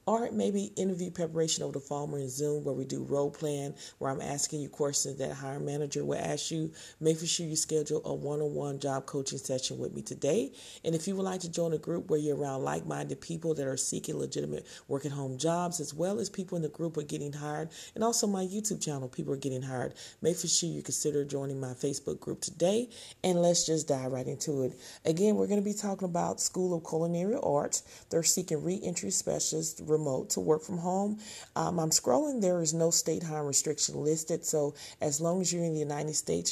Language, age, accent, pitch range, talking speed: English, 40-59, American, 145-180 Hz, 220 wpm